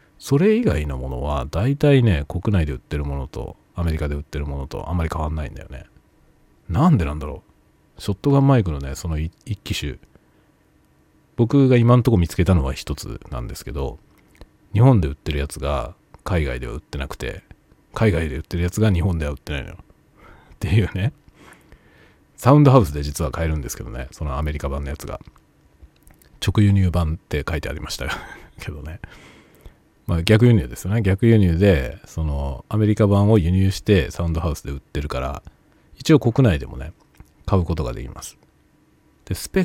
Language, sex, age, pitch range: Japanese, male, 40-59, 75-110 Hz